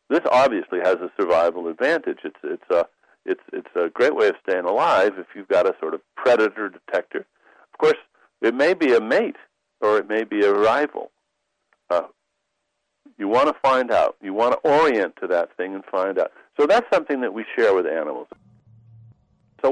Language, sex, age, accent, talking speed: English, male, 60-79, American, 190 wpm